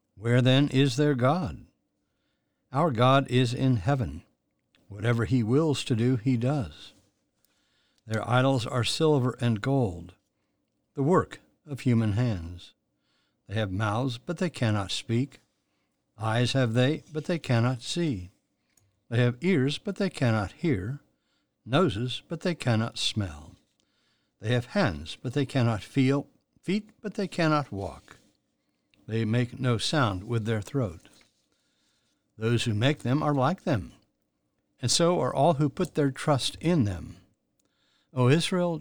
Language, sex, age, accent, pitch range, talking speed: English, male, 60-79, American, 110-140 Hz, 140 wpm